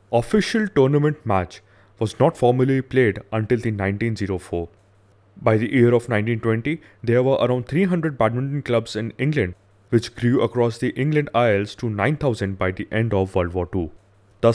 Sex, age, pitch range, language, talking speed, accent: male, 20-39, 100-125 Hz, English, 160 wpm, Indian